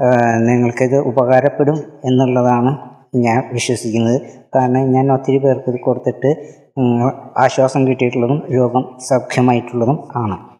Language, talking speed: Malayalam, 85 wpm